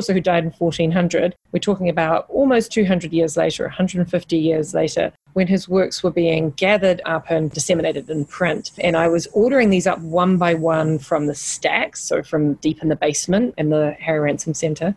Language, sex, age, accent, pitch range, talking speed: English, female, 30-49, Australian, 160-190 Hz, 190 wpm